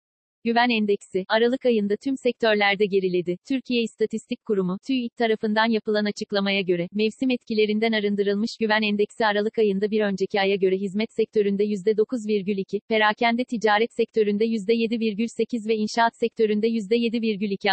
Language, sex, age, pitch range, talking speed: Turkish, female, 40-59, 200-225 Hz, 125 wpm